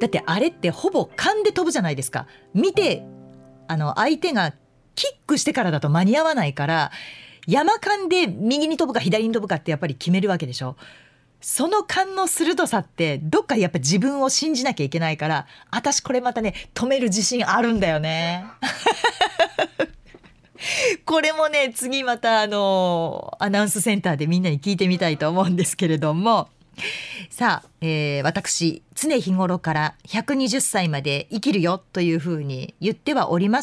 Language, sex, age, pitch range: Japanese, female, 40-59, 160-270 Hz